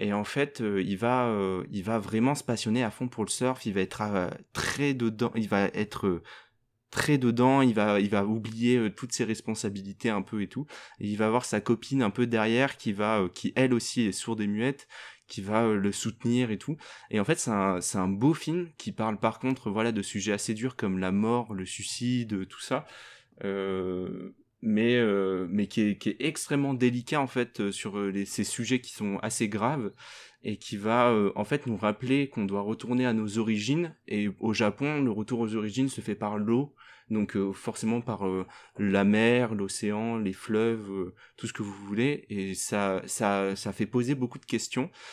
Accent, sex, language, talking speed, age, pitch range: French, male, French, 215 wpm, 20-39, 100-125 Hz